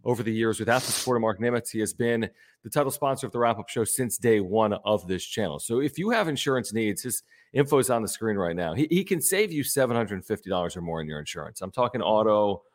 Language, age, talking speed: English, 40-59, 250 wpm